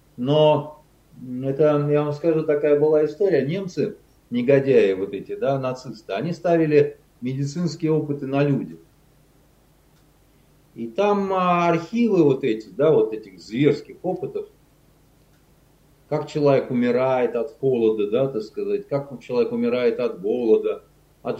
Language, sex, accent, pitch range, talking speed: Russian, male, native, 140-195 Hz, 125 wpm